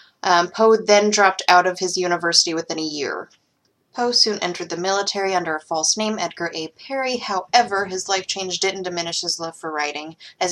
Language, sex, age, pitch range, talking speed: English, female, 20-39, 170-215 Hz, 195 wpm